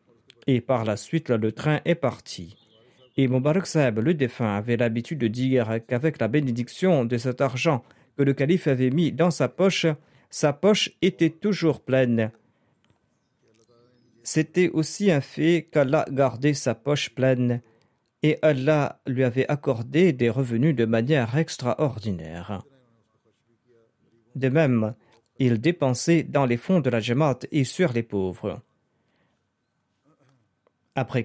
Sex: male